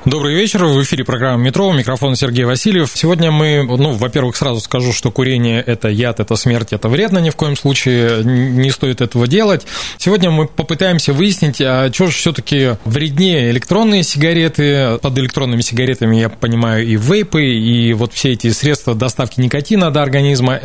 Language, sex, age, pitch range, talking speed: Russian, male, 20-39, 125-165 Hz, 175 wpm